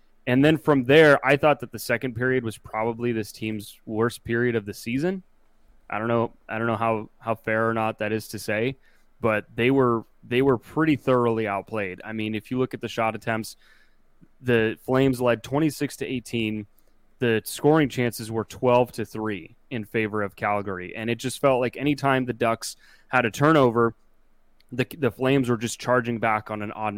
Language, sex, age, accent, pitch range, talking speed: English, male, 20-39, American, 110-130 Hz, 200 wpm